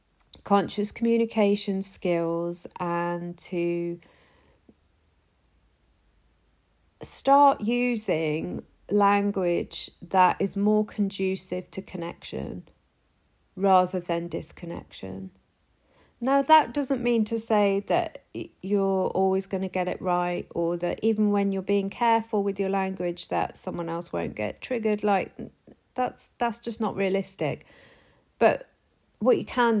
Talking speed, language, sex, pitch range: 115 wpm, English, female, 175-210 Hz